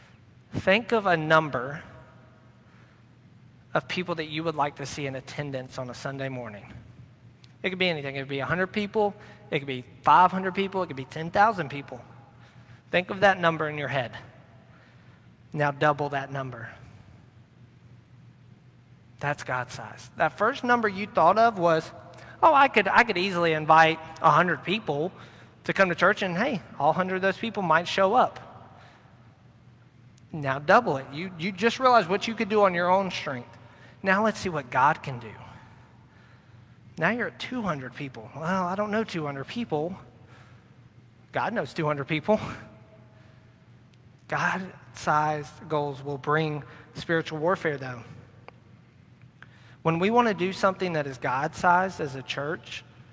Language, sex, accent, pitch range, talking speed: English, male, American, 125-175 Hz, 155 wpm